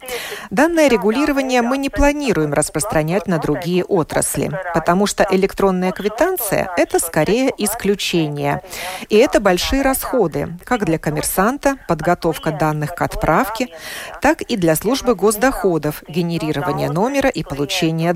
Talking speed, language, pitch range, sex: 120 wpm, Russian, 160-230 Hz, female